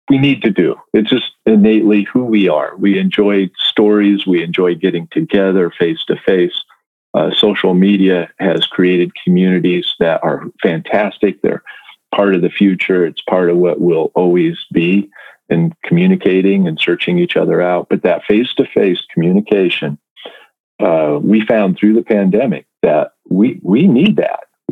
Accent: American